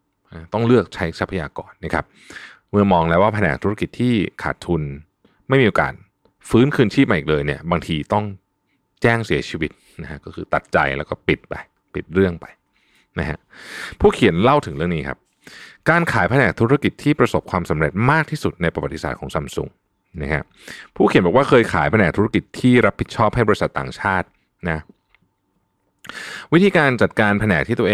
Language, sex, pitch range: Thai, male, 85-120 Hz